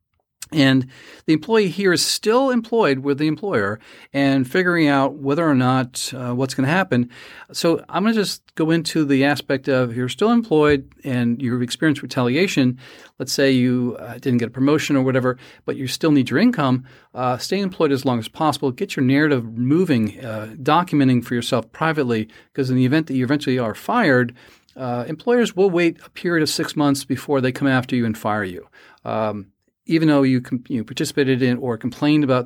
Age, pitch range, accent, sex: 40-59, 125-160 Hz, American, male